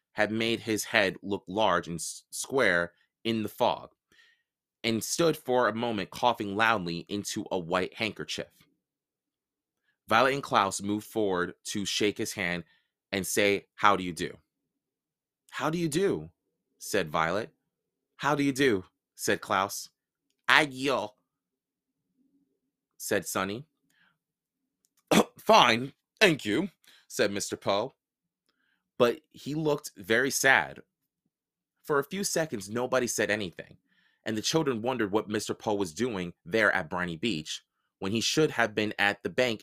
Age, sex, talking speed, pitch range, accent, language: 30-49, male, 140 wpm, 100-130 Hz, American, English